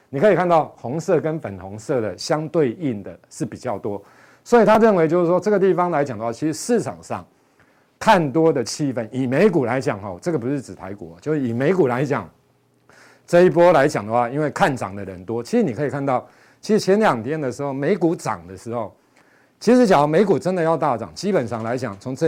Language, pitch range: Chinese, 115-165 Hz